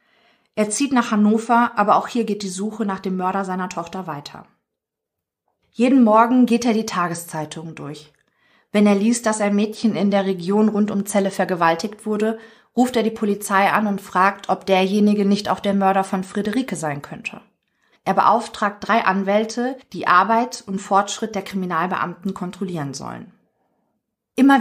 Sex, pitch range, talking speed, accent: female, 185-220 Hz, 165 wpm, German